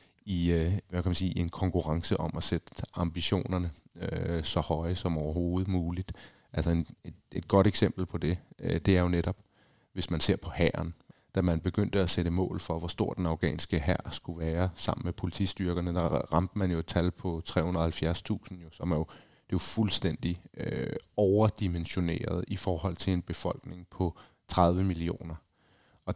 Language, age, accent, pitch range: Danish, 30-49, native, 85-95 Hz